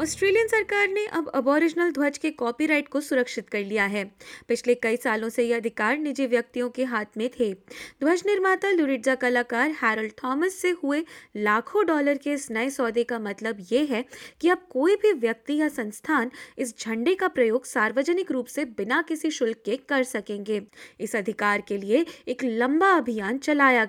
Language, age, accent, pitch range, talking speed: Hindi, 20-39, native, 230-315 Hz, 100 wpm